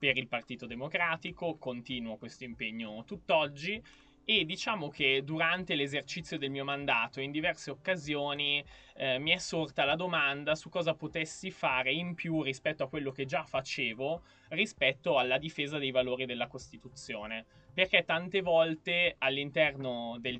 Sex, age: male, 20-39